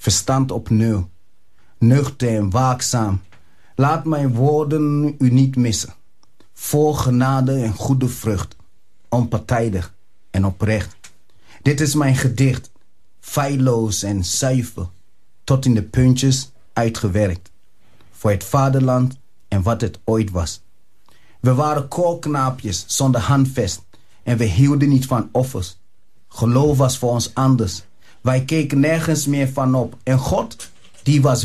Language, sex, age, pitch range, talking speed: Dutch, male, 30-49, 105-140 Hz, 125 wpm